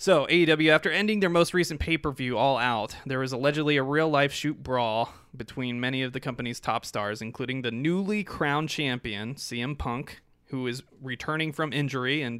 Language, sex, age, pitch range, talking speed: English, male, 20-39, 120-145 Hz, 180 wpm